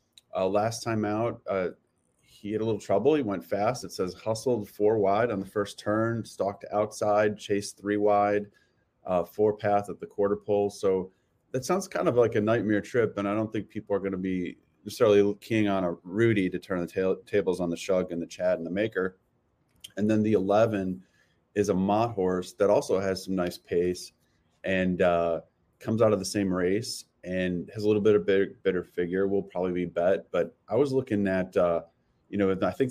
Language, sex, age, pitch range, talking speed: English, male, 30-49, 90-105 Hz, 210 wpm